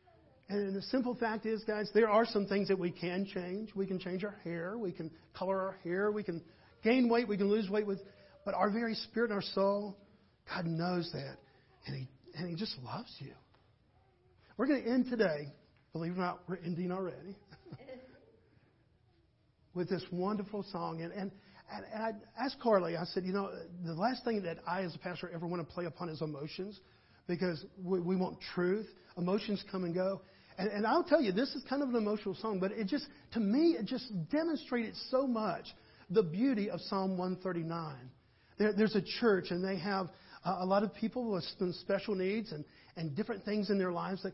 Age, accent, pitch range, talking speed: 50-69, American, 180-215 Hz, 200 wpm